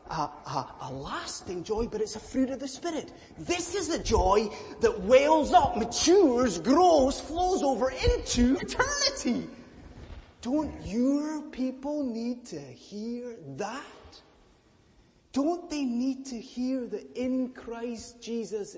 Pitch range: 180-270 Hz